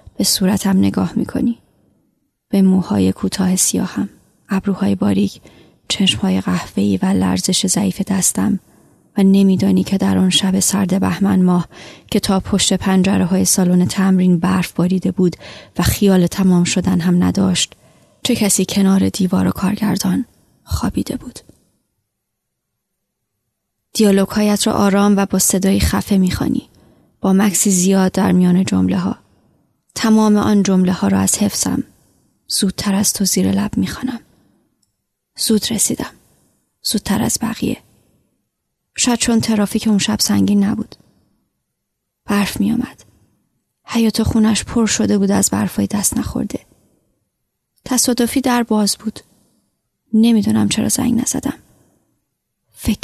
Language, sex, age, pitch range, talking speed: Persian, female, 20-39, 185-220 Hz, 130 wpm